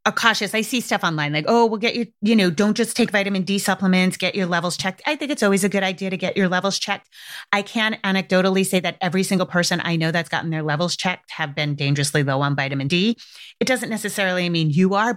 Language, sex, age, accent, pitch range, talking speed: English, female, 30-49, American, 155-195 Hz, 245 wpm